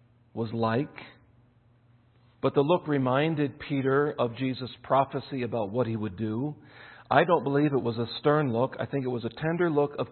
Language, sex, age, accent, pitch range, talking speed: English, male, 50-69, American, 115-140 Hz, 185 wpm